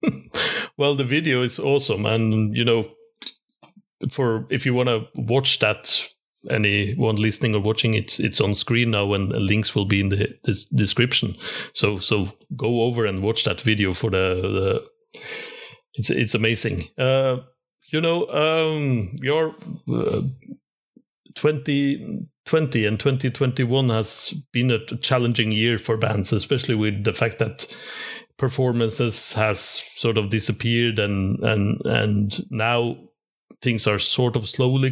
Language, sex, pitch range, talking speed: English, male, 105-135 Hz, 140 wpm